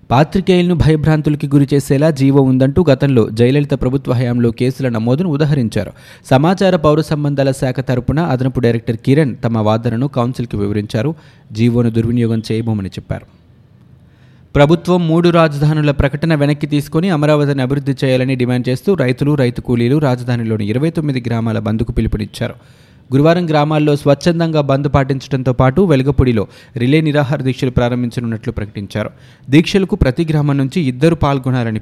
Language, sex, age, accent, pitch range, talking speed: Telugu, male, 20-39, native, 120-150 Hz, 120 wpm